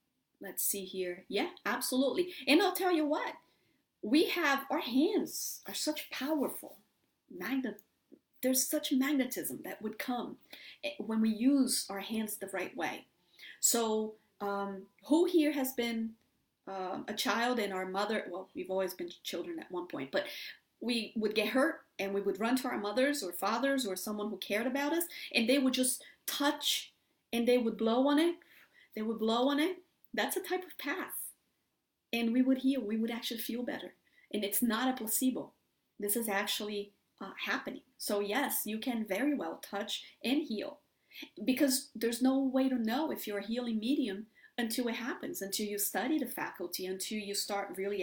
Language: English